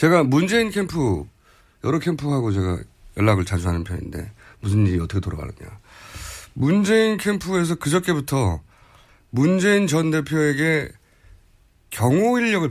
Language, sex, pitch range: Korean, male, 95-155 Hz